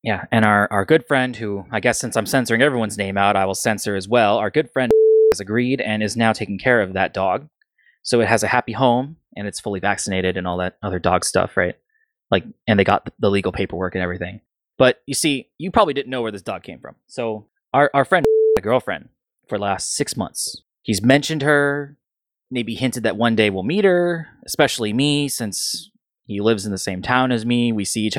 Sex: male